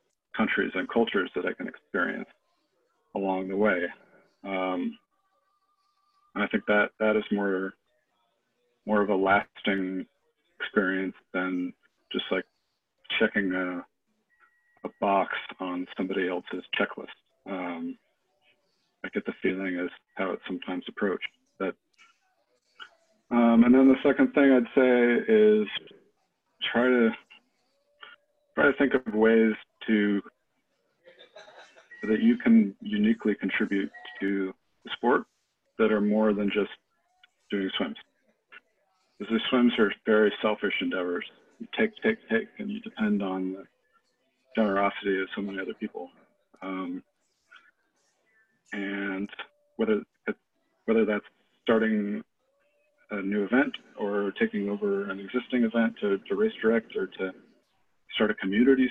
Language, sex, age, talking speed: English, male, 40-59, 125 wpm